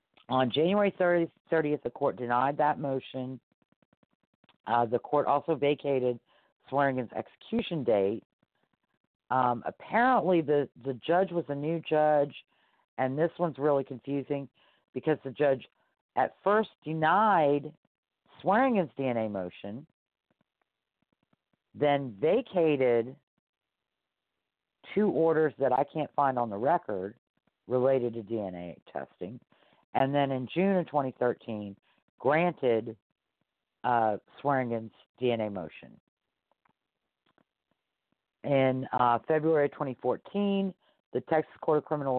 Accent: American